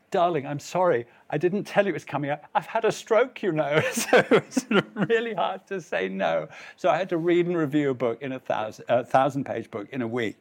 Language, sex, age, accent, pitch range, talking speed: English, male, 50-69, British, 115-160 Hz, 235 wpm